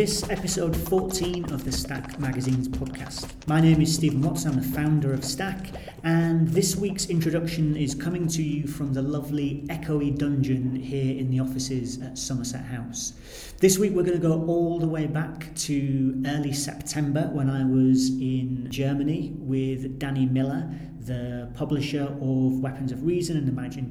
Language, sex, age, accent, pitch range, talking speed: English, male, 30-49, British, 130-150 Hz, 170 wpm